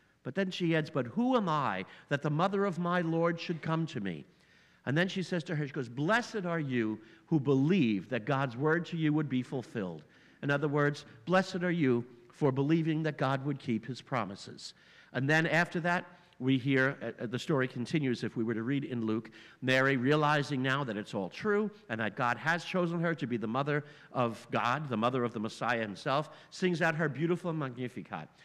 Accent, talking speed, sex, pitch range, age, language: American, 210 wpm, male, 120-165 Hz, 50-69, English